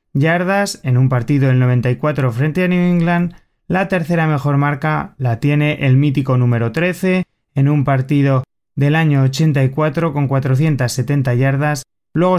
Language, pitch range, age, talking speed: Spanish, 135-160 Hz, 20-39, 145 wpm